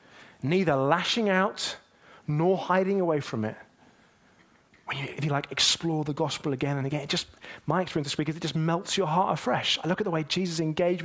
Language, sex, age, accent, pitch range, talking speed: English, male, 30-49, British, 140-190 Hz, 215 wpm